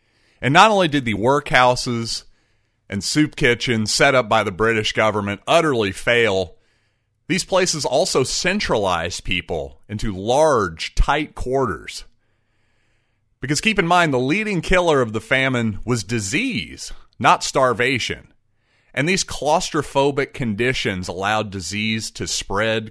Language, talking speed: English, 125 wpm